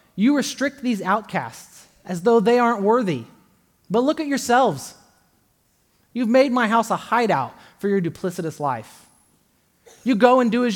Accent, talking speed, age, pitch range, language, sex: American, 155 wpm, 30-49, 145-220 Hz, English, male